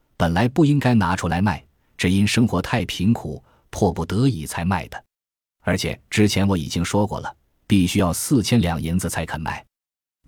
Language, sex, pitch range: Chinese, male, 85-115 Hz